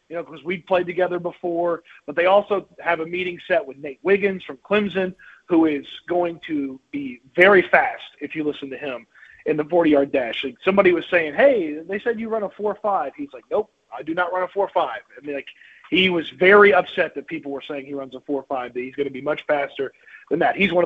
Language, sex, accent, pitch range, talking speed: English, male, American, 155-190 Hz, 235 wpm